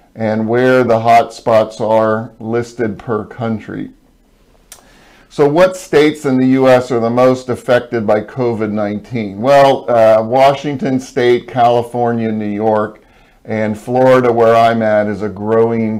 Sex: male